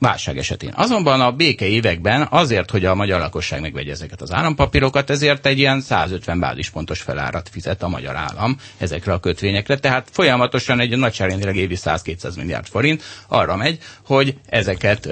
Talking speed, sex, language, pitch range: 160 wpm, male, Hungarian, 90-125 Hz